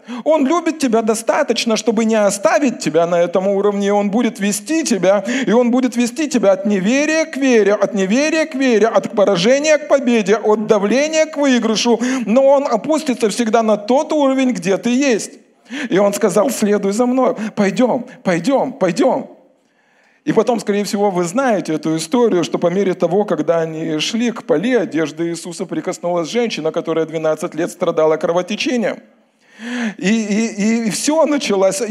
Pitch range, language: 195-260 Hz, Russian